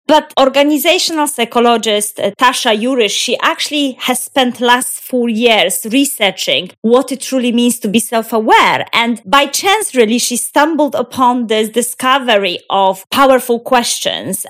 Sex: female